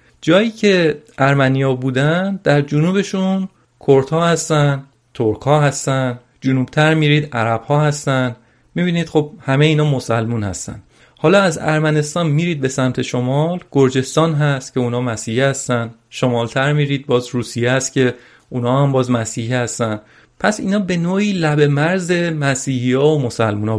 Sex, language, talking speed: male, Persian, 140 wpm